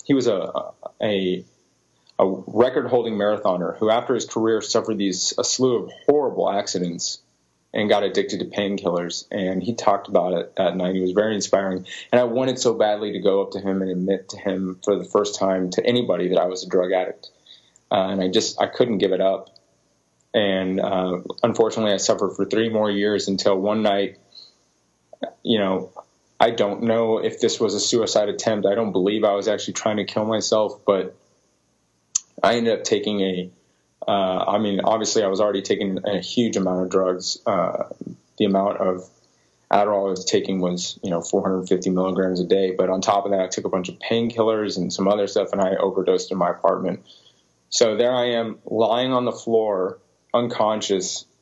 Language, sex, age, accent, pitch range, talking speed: English, male, 30-49, American, 95-110 Hz, 195 wpm